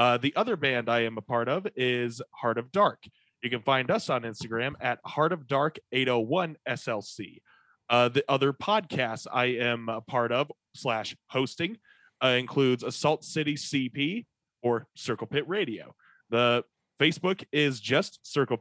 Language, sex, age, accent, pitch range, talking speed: English, male, 30-49, American, 125-155 Hz, 160 wpm